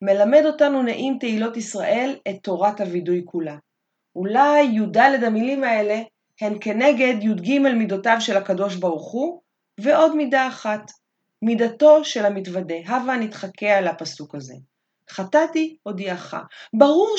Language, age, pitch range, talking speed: Hebrew, 30-49, 185-260 Hz, 120 wpm